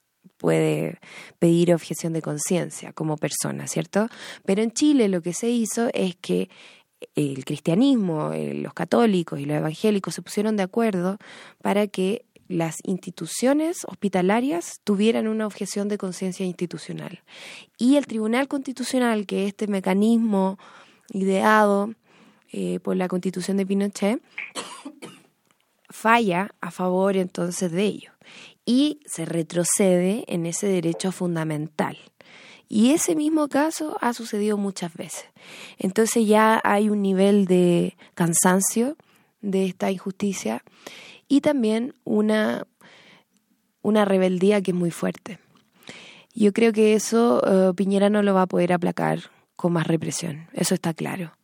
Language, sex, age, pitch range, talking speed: Spanish, female, 20-39, 180-225 Hz, 130 wpm